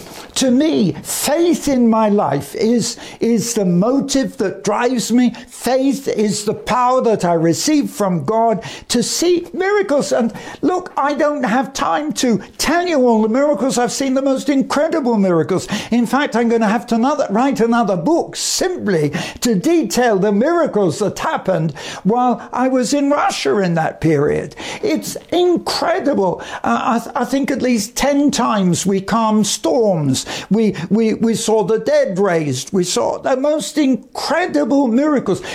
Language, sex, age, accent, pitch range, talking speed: English, male, 60-79, British, 205-285 Hz, 160 wpm